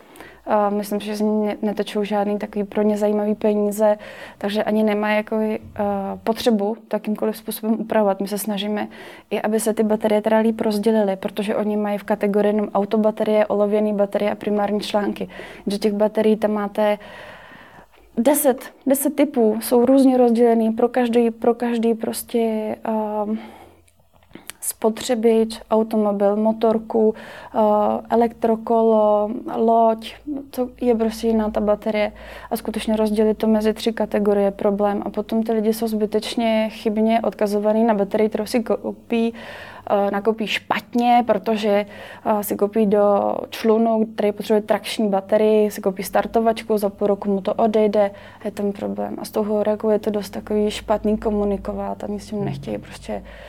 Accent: native